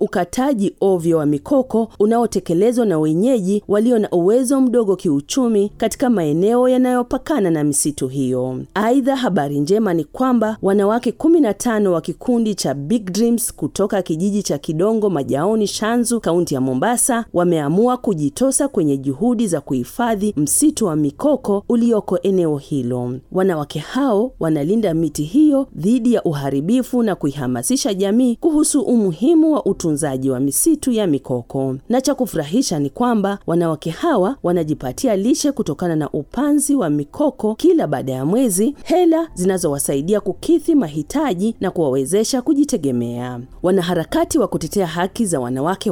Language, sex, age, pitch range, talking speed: Swahili, female, 40-59, 150-245 Hz, 135 wpm